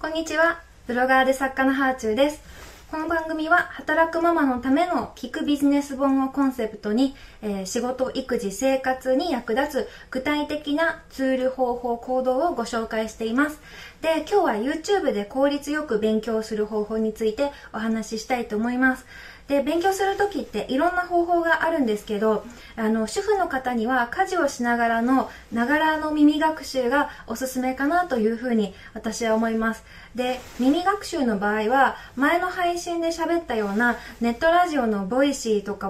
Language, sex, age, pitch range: Japanese, female, 20-39, 230-315 Hz